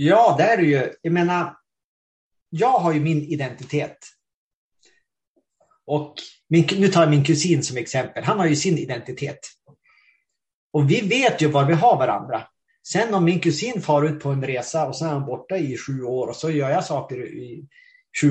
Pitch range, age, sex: 135-165 Hz, 30-49, male